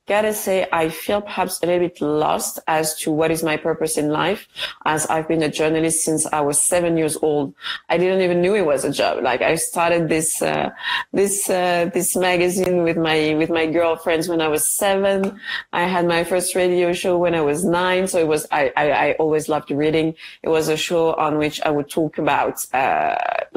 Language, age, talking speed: English, 30-49, 215 wpm